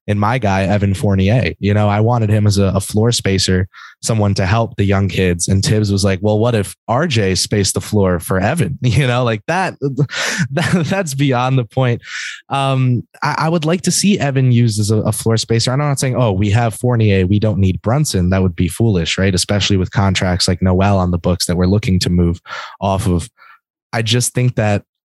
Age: 20-39